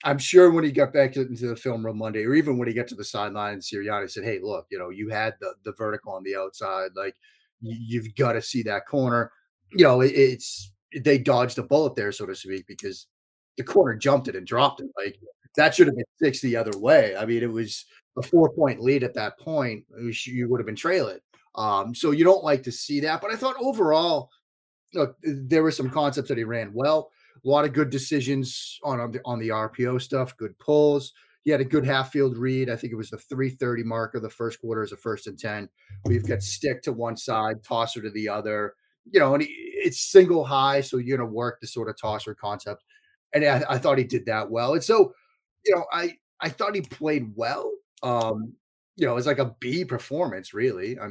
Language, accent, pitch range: English, American, 110-145 Hz